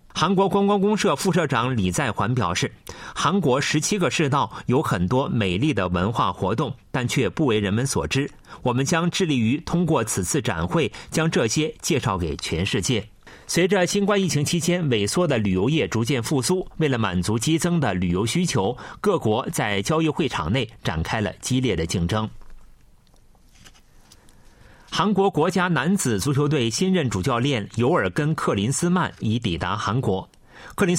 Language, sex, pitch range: Chinese, male, 110-170 Hz